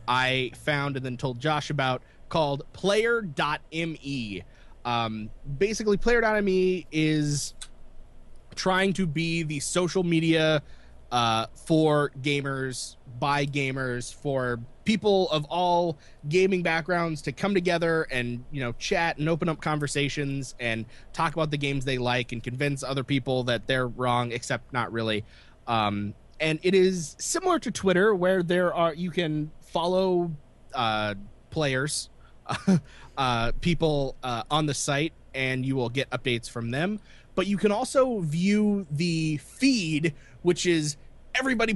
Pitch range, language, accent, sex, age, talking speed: 130-175 Hz, English, American, male, 20-39, 140 wpm